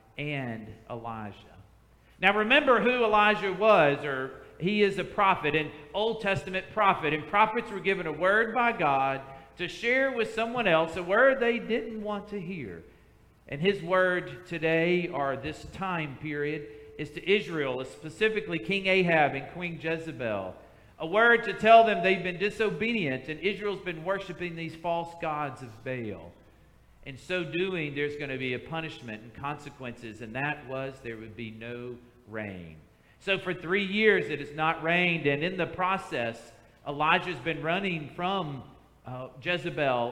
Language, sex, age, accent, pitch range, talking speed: English, male, 50-69, American, 135-190 Hz, 160 wpm